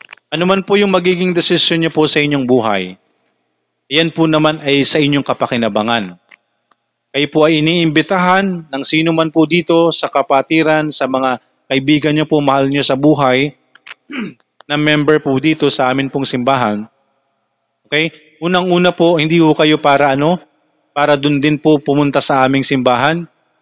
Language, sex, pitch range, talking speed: Filipino, male, 125-155 Hz, 155 wpm